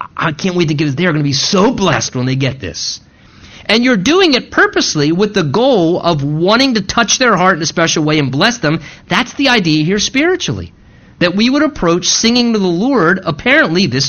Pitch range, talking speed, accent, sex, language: 155-230 Hz, 220 wpm, American, male, English